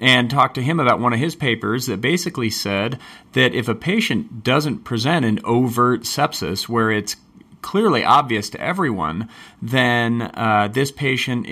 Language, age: English, 30-49